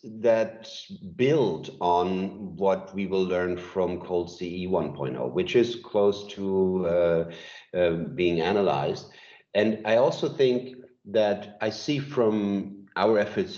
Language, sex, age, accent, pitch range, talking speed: English, male, 50-69, German, 85-110 Hz, 130 wpm